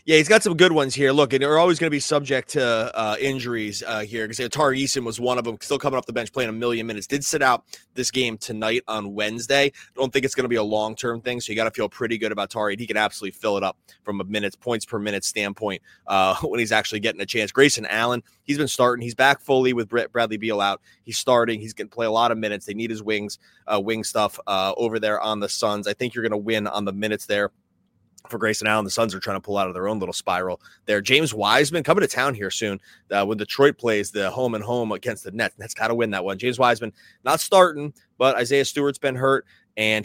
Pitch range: 105-130 Hz